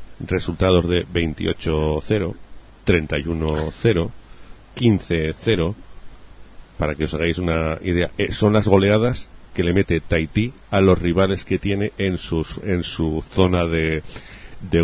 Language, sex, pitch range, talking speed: English, male, 80-95 Hz, 125 wpm